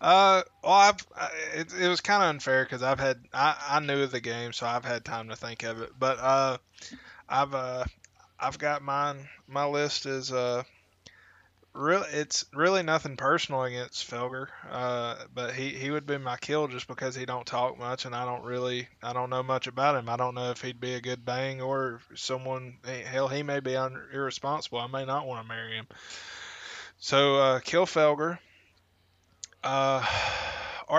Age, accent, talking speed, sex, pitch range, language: 20-39, American, 190 wpm, male, 120-135 Hz, English